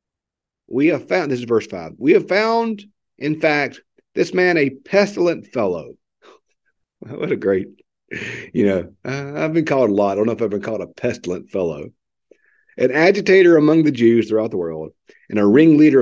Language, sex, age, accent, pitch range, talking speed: English, male, 50-69, American, 95-135 Hz, 185 wpm